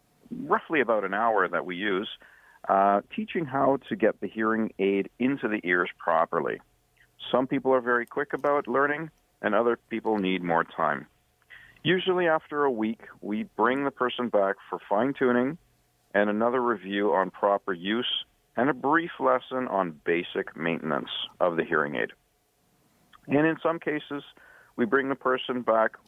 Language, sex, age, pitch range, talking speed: English, male, 50-69, 100-145 Hz, 160 wpm